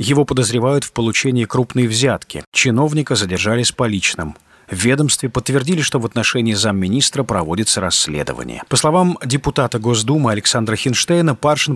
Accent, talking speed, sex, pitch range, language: native, 135 wpm, male, 110-145 Hz, Russian